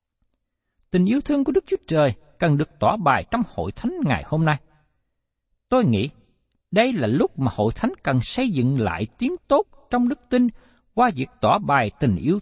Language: Vietnamese